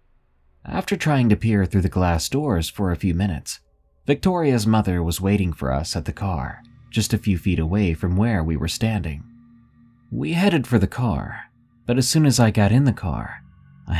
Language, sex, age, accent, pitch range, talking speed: English, male, 30-49, American, 90-120 Hz, 195 wpm